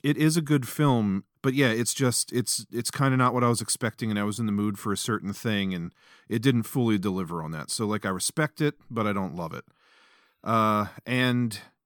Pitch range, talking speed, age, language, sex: 95-120 Hz, 240 wpm, 40-59, English, male